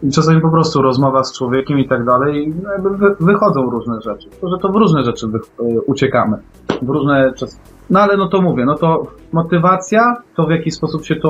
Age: 30-49